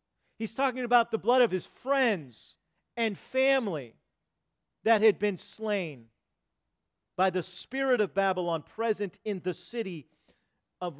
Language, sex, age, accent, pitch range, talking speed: English, male, 40-59, American, 160-215 Hz, 130 wpm